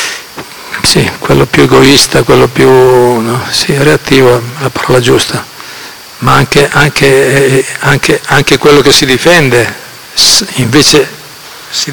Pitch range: 130-150 Hz